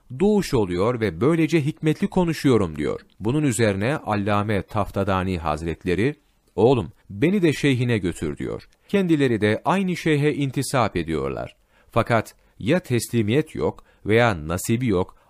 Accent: native